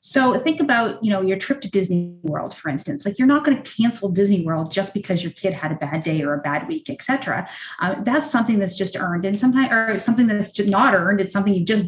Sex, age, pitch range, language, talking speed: female, 30-49, 180-230 Hz, English, 260 wpm